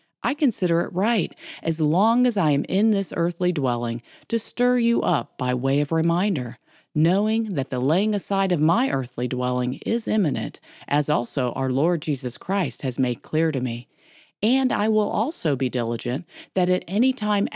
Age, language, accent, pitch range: 40-59, English, American, 135-200 Hz